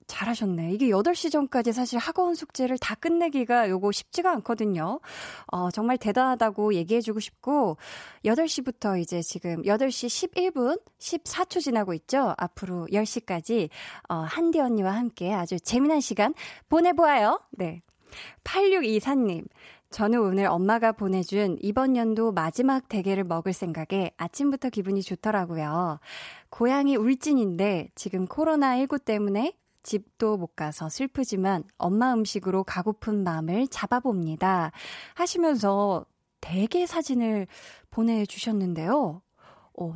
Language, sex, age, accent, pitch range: Korean, female, 20-39, native, 190-265 Hz